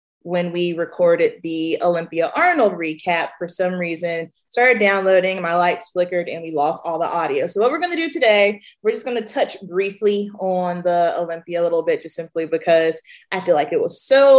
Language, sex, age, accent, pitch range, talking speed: English, female, 20-39, American, 175-220 Hz, 205 wpm